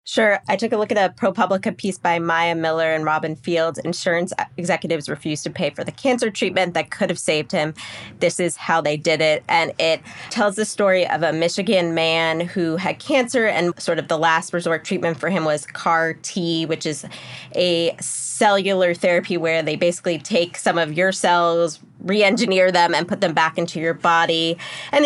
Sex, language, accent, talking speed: female, English, American, 195 wpm